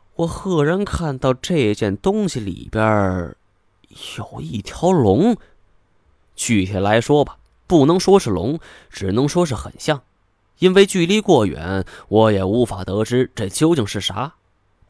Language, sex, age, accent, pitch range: Chinese, male, 20-39, native, 100-160 Hz